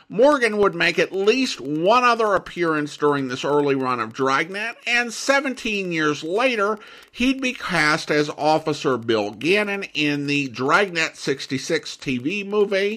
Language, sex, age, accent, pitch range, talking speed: English, male, 50-69, American, 135-190 Hz, 145 wpm